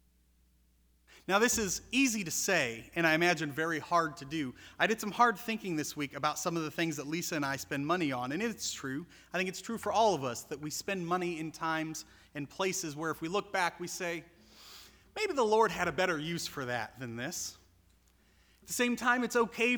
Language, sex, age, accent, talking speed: English, male, 30-49, American, 230 wpm